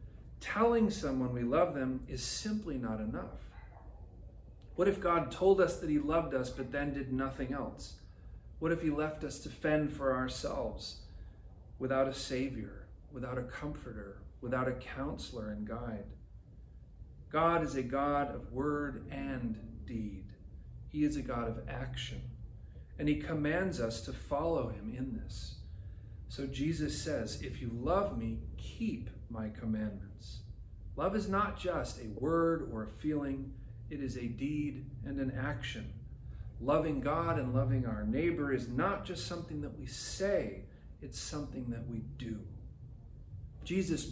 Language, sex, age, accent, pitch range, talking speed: English, male, 40-59, American, 110-150 Hz, 150 wpm